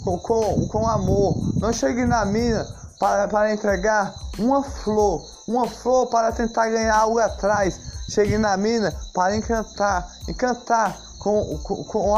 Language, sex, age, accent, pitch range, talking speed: Portuguese, male, 20-39, Brazilian, 205-235 Hz, 140 wpm